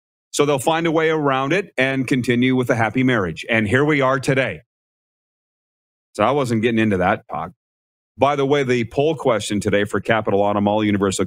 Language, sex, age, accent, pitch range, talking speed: English, male, 30-49, American, 105-135 Hz, 190 wpm